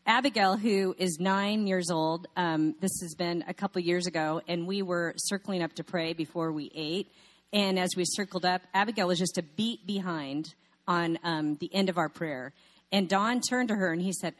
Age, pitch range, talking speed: 40-59, 170-225 Hz, 210 wpm